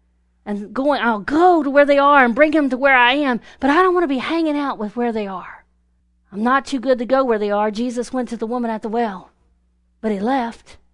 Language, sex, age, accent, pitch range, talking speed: English, female, 40-59, American, 195-265 Hz, 260 wpm